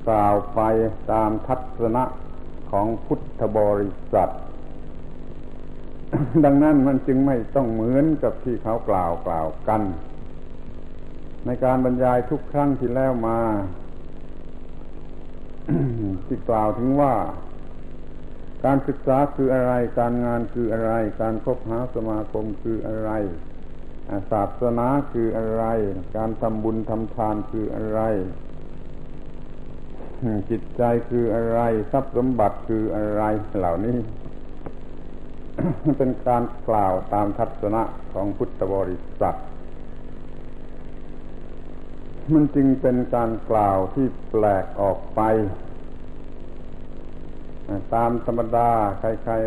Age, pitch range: 70-89, 95-125 Hz